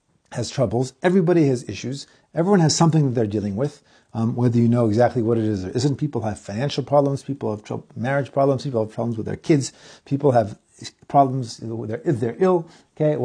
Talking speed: 210 wpm